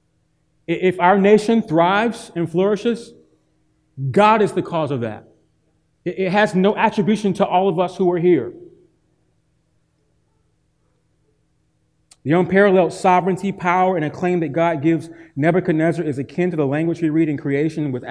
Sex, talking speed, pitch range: male, 145 wpm, 150-195 Hz